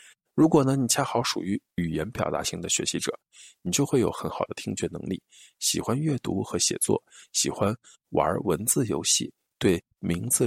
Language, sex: Chinese, male